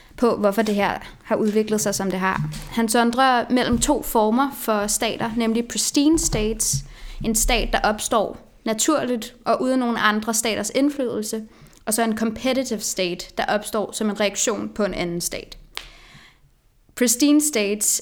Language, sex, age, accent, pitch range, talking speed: Danish, female, 20-39, native, 205-230 Hz, 155 wpm